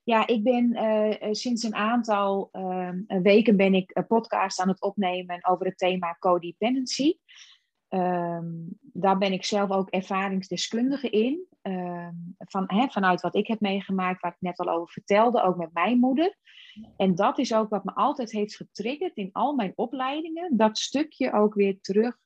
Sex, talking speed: female, 175 wpm